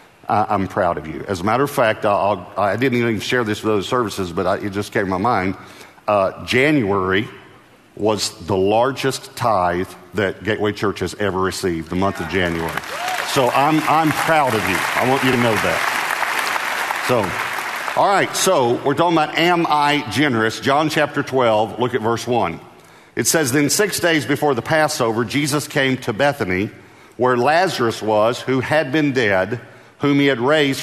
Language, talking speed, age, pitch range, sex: English, 180 wpm, 50-69, 110-150 Hz, male